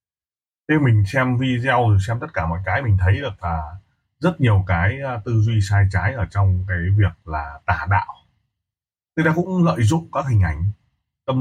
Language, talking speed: Vietnamese, 190 wpm